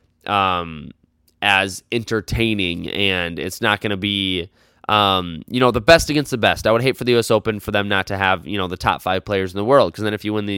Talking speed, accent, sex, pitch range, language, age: 250 wpm, American, male, 95-120 Hz, English, 20-39